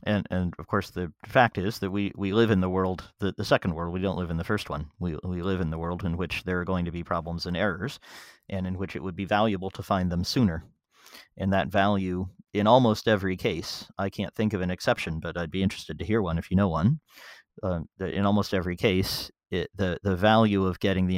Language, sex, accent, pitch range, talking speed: English, male, American, 90-105 Hz, 250 wpm